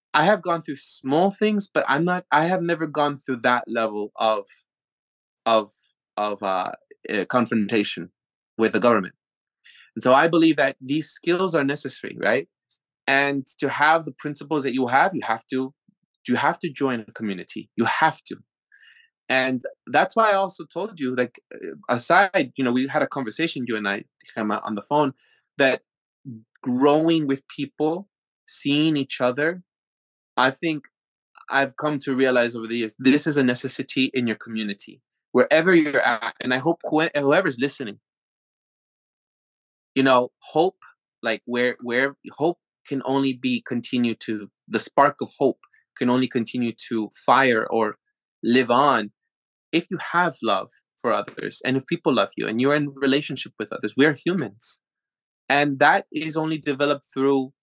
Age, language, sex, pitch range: 20-39, English, male, 125-160 Hz